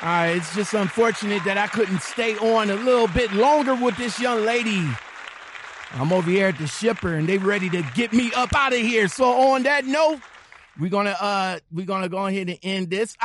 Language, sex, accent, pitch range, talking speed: English, male, American, 150-210 Hz, 220 wpm